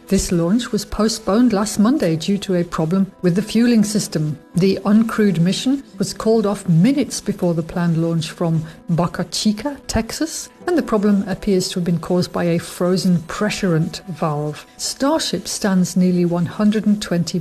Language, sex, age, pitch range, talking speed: English, female, 50-69, 175-210 Hz, 160 wpm